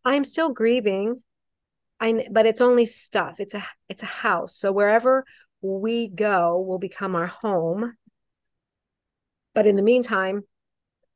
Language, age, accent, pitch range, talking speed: English, 40-59, American, 180-225 Hz, 135 wpm